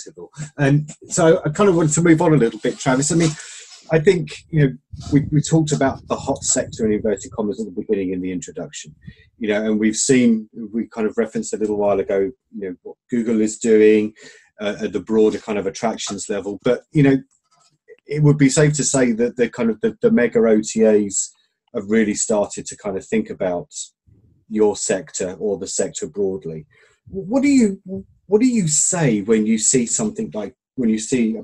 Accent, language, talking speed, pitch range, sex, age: British, English, 210 wpm, 110-170 Hz, male, 30-49